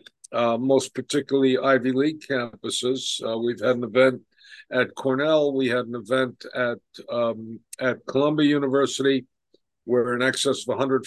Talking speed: 145 wpm